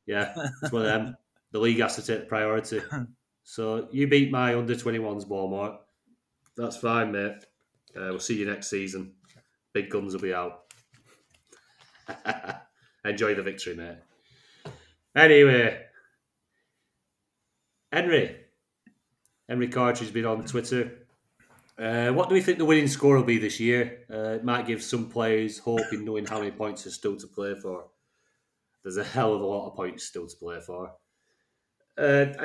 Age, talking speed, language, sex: 30-49, 160 wpm, English, male